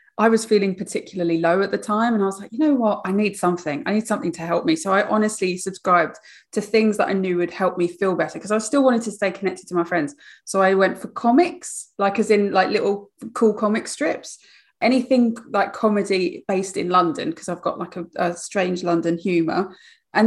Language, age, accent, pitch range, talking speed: English, 30-49, British, 180-220 Hz, 230 wpm